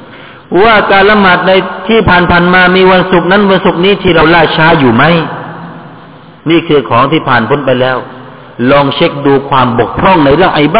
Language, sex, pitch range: Thai, male, 145-200 Hz